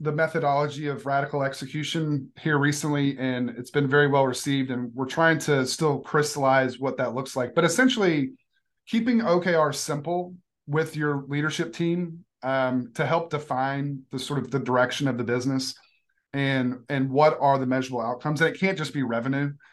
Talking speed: 175 wpm